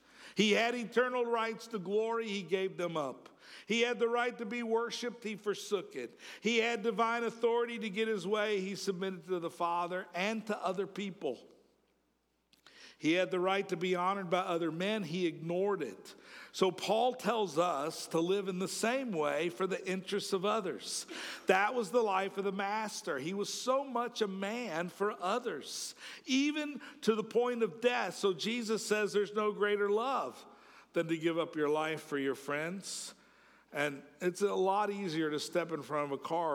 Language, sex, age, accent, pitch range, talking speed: English, male, 50-69, American, 140-215 Hz, 185 wpm